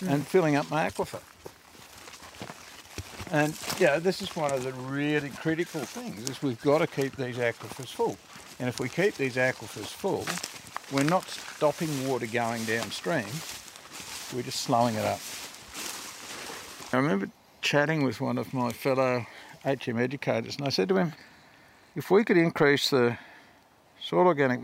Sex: male